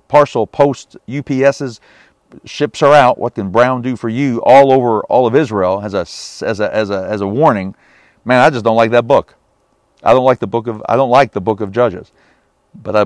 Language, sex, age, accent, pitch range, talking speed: English, male, 50-69, American, 105-150 Hz, 220 wpm